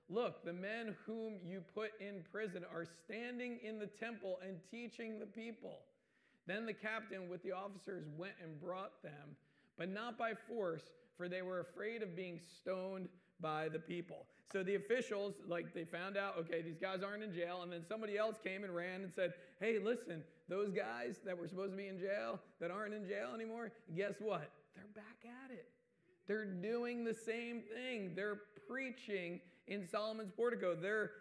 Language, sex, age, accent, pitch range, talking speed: English, male, 40-59, American, 175-220 Hz, 185 wpm